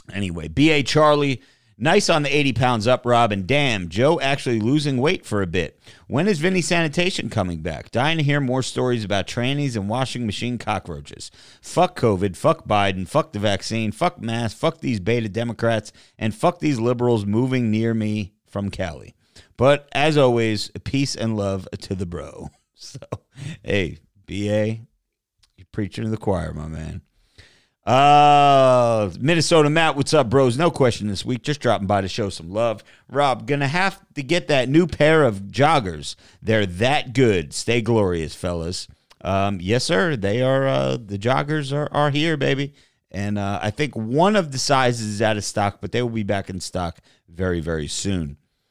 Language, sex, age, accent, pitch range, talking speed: English, male, 30-49, American, 100-145 Hz, 175 wpm